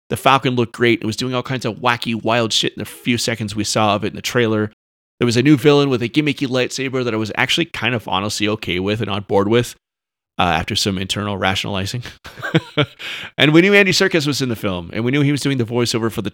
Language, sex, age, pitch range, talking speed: English, male, 30-49, 100-130 Hz, 255 wpm